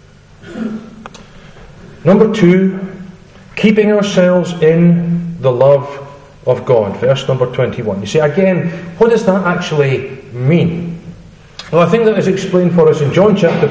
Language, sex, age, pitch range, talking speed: English, male, 40-59, 155-195 Hz, 135 wpm